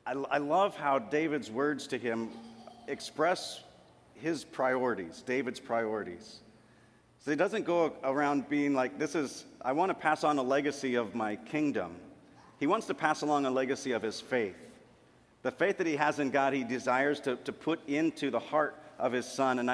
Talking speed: 185 wpm